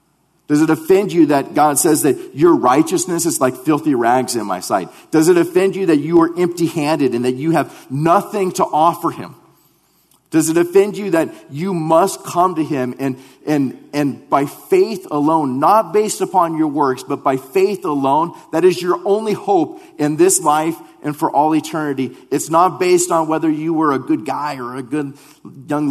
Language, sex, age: English, male, 40-59